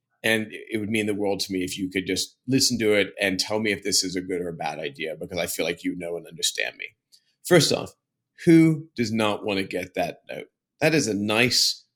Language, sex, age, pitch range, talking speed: English, male, 30-49, 100-145 Hz, 250 wpm